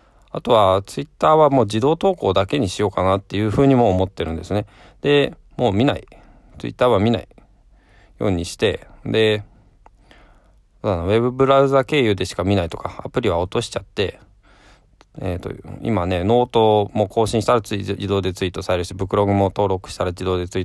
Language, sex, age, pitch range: Japanese, male, 20-39, 95-120 Hz